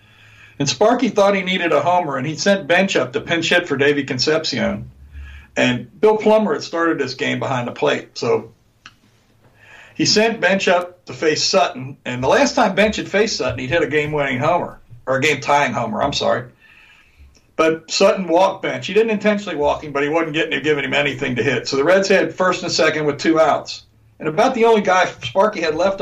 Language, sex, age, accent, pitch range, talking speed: English, male, 60-79, American, 130-185 Hz, 210 wpm